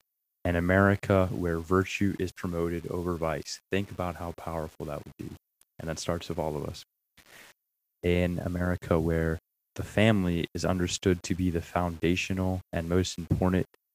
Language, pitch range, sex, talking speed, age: English, 85-95 Hz, male, 155 wpm, 20-39